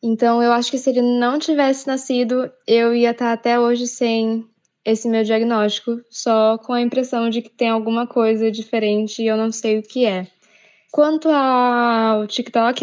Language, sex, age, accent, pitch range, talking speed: Portuguese, female, 10-29, Brazilian, 220-270 Hz, 180 wpm